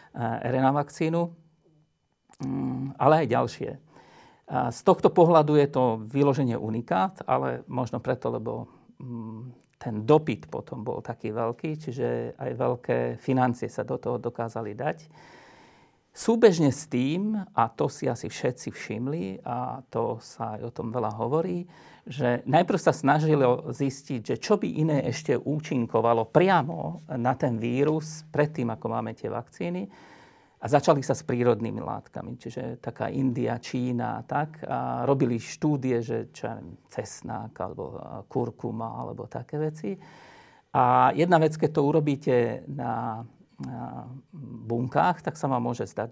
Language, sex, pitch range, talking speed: Slovak, male, 120-155 Hz, 135 wpm